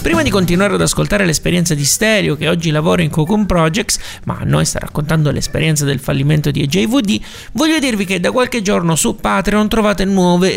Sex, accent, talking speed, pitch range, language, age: male, native, 195 wpm, 150-215 Hz, Italian, 30-49